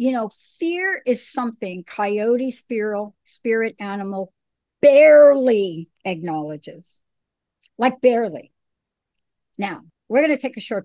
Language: English